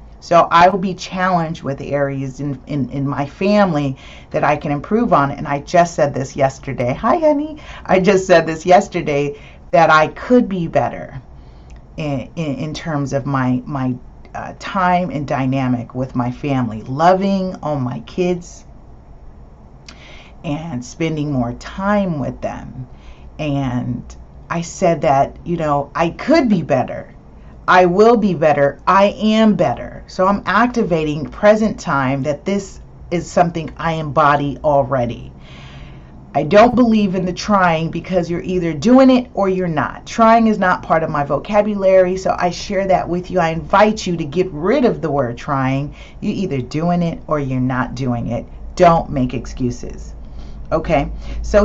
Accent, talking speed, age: American, 160 wpm, 40-59